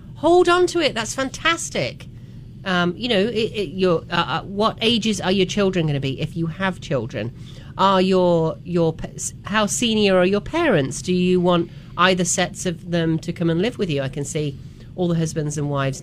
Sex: female